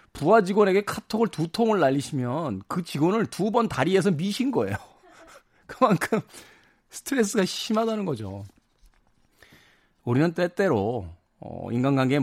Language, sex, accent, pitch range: Korean, male, native, 120-185 Hz